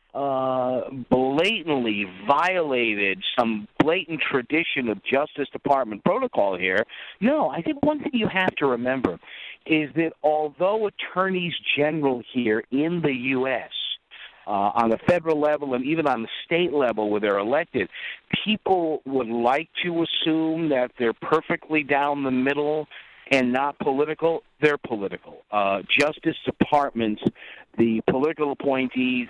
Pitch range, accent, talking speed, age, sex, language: 110-150 Hz, American, 135 wpm, 50-69, male, English